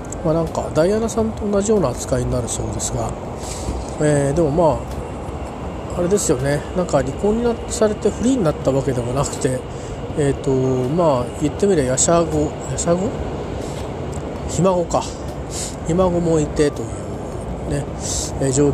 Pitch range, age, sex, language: 115-160 Hz, 40-59, male, Japanese